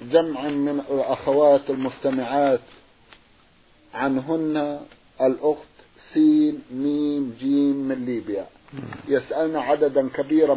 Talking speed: 80 wpm